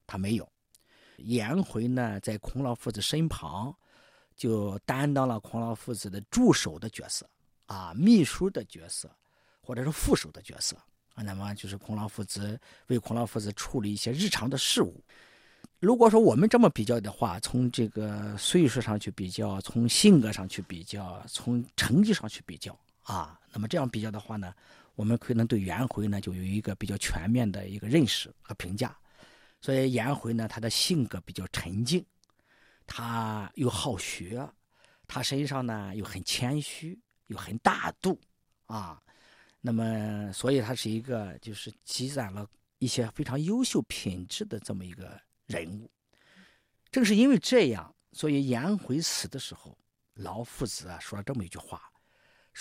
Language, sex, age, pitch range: Chinese, male, 50-69, 100-135 Hz